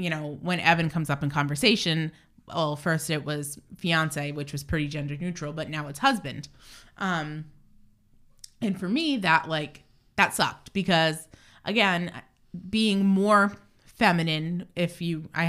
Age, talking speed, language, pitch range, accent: 20-39, 145 wpm, English, 155-195 Hz, American